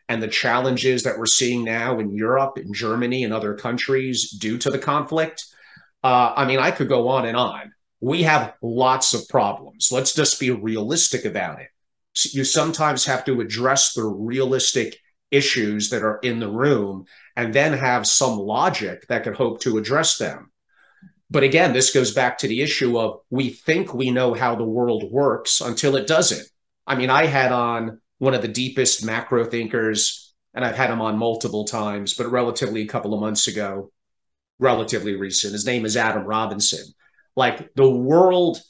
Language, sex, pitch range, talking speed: English, male, 110-135 Hz, 180 wpm